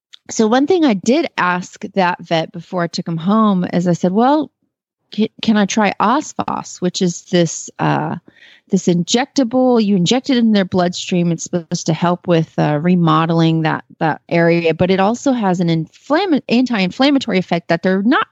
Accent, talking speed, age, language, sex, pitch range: American, 175 wpm, 30-49, English, female, 175-235 Hz